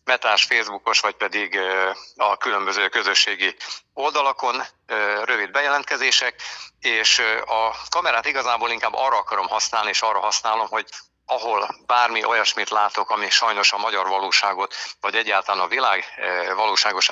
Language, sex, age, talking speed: Hungarian, male, 60-79, 125 wpm